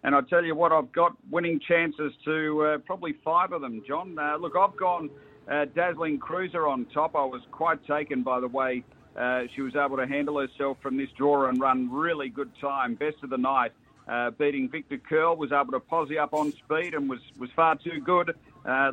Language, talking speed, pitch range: English, 220 wpm, 140-170 Hz